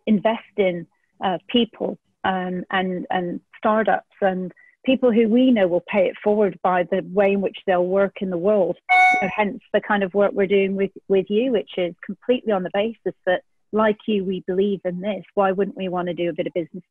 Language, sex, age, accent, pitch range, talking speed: English, female, 40-59, British, 180-215 Hz, 220 wpm